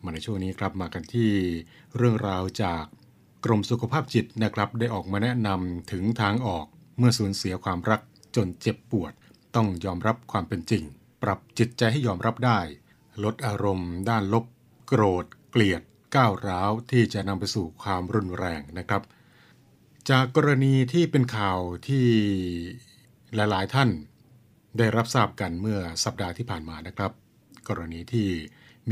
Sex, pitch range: male, 95-120 Hz